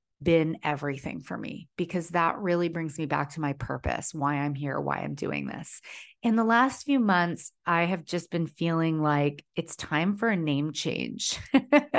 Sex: female